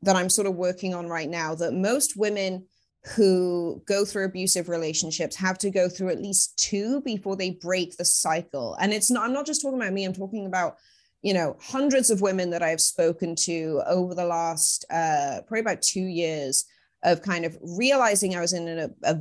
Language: English